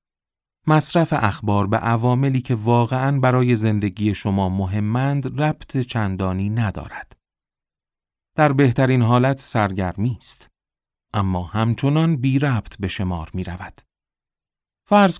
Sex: male